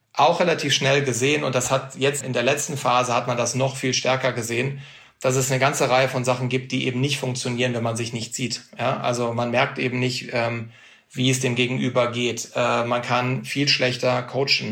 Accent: German